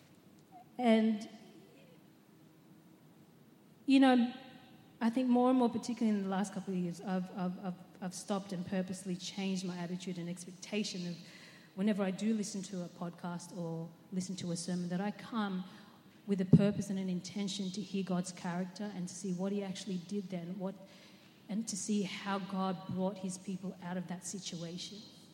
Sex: female